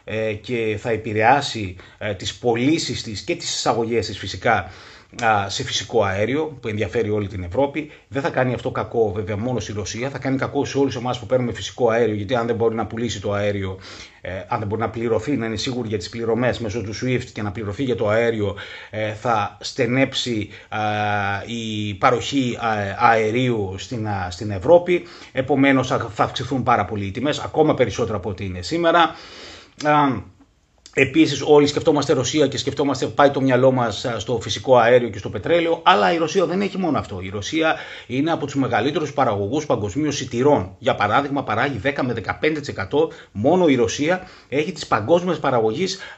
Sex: male